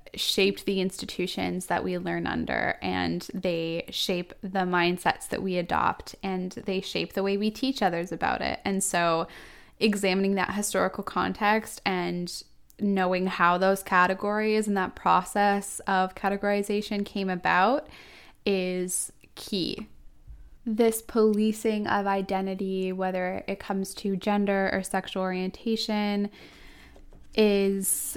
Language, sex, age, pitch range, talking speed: English, female, 10-29, 185-210 Hz, 125 wpm